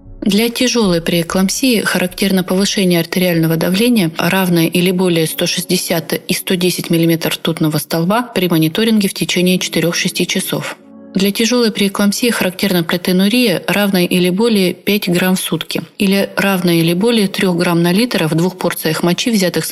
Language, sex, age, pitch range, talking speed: Russian, female, 30-49, 165-195 Hz, 145 wpm